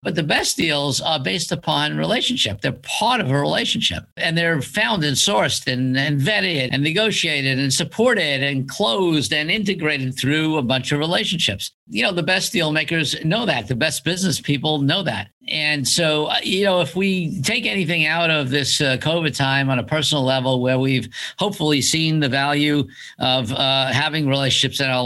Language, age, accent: English, 50-69, American